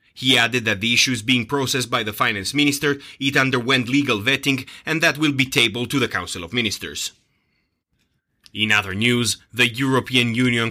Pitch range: 120-140 Hz